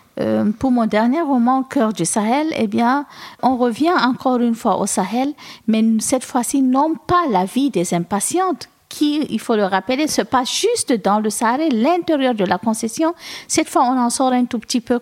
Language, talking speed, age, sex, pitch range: French, 205 wpm, 50-69, female, 195-240 Hz